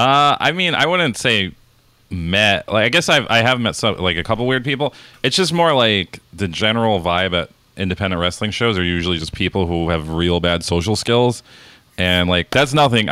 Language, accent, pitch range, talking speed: English, American, 85-110 Hz, 205 wpm